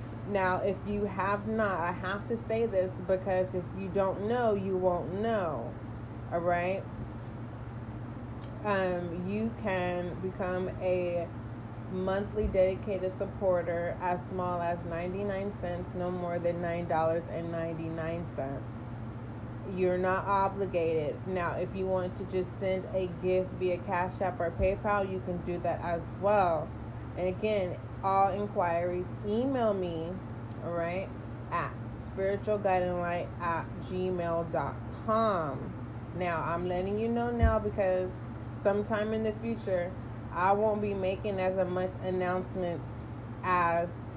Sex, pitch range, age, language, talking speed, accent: female, 135-190 Hz, 30-49, English, 125 wpm, American